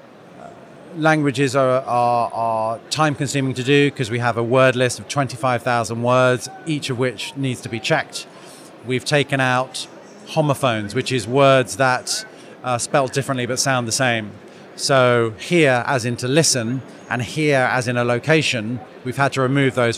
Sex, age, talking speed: male, 30-49, 160 wpm